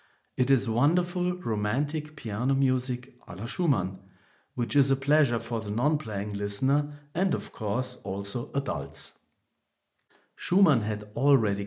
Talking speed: 130 wpm